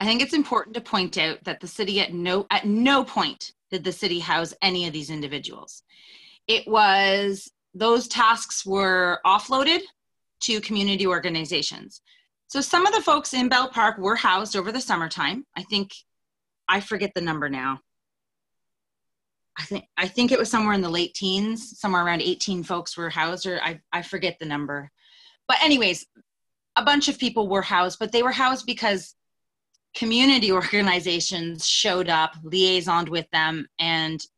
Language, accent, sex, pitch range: English, American, female, 175-240 Hz